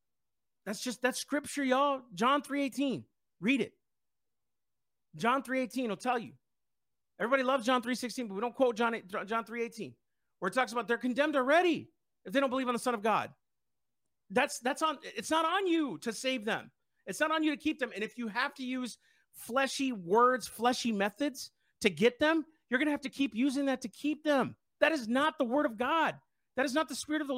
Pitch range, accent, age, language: 235-290 Hz, American, 40-59, English